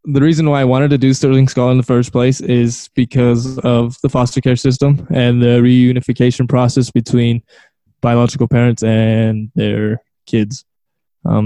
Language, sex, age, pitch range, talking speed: English, male, 10-29, 115-130 Hz, 160 wpm